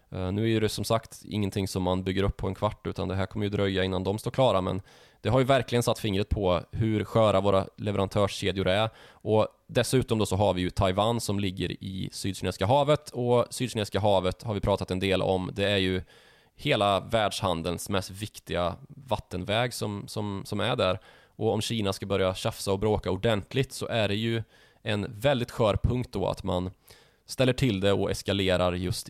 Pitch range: 95-115 Hz